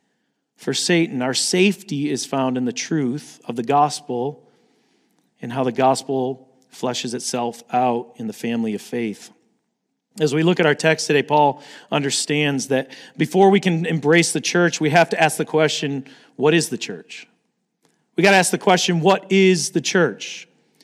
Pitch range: 140-180 Hz